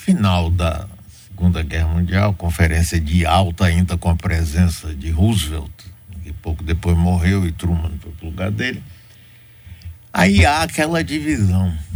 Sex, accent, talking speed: male, Brazilian, 140 wpm